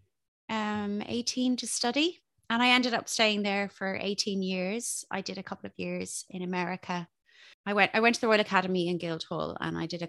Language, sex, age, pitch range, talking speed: English, female, 20-39, 190-260 Hz, 210 wpm